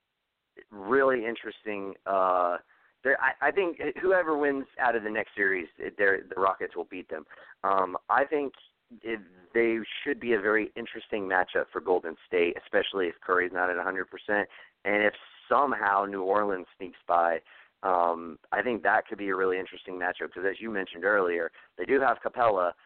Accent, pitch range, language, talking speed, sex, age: American, 100-145 Hz, English, 175 wpm, male, 30-49